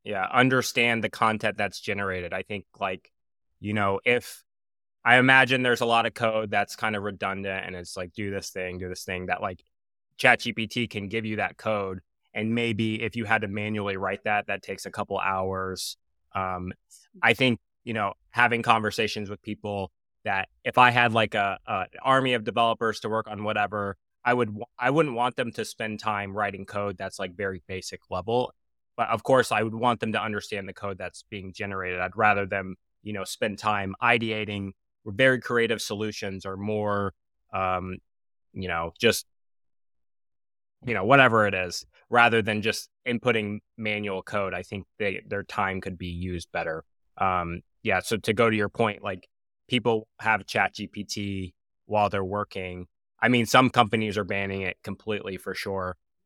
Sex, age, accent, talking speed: male, 20-39, American, 180 wpm